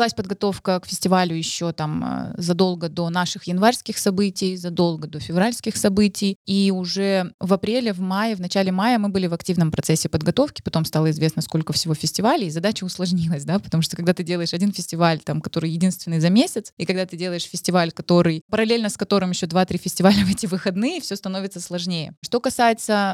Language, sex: Russian, female